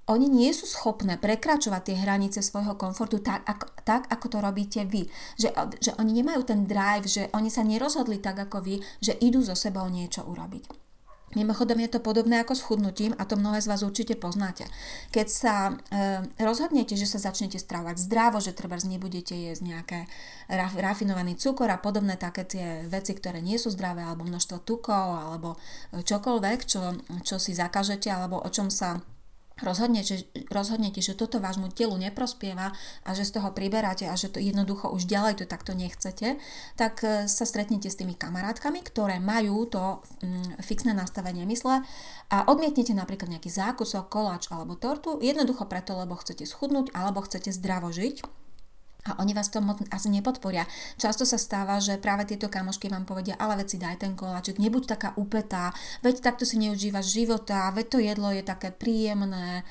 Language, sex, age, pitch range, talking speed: Slovak, female, 30-49, 190-225 Hz, 170 wpm